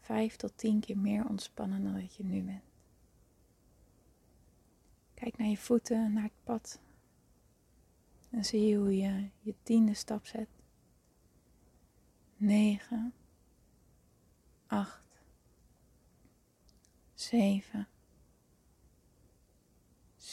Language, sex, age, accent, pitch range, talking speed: Dutch, female, 30-49, Dutch, 195-220 Hz, 90 wpm